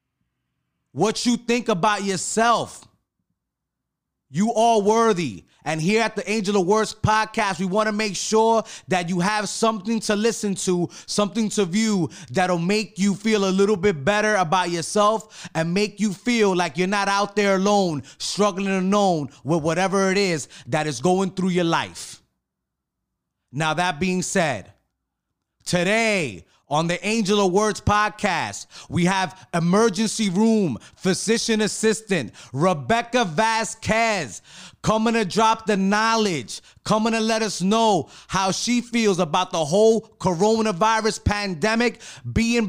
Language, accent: English, American